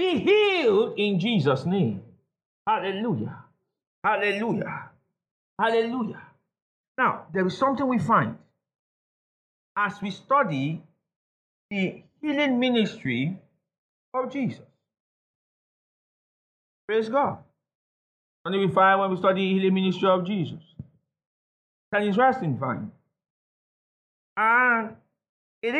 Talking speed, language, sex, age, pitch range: 95 wpm, English, male, 50-69, 185-265 Hz